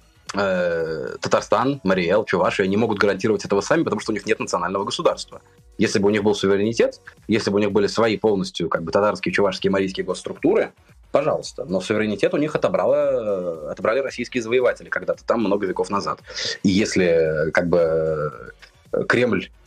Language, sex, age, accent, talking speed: Russian, male, 20-39, native, 155 wpm